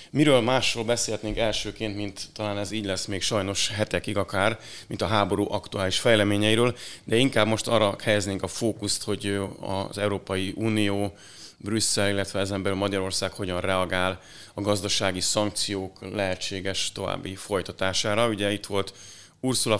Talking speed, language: 140 wpm, Hungarian